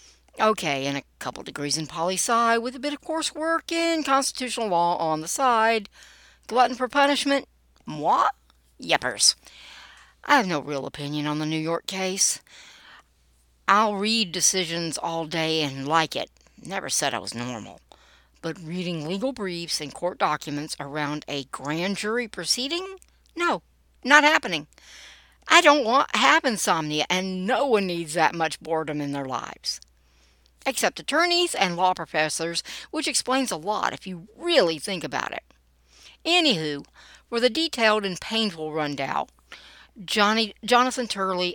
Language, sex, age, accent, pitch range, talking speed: English, female, 60-79, American, 155-240 Hz, 145 wpm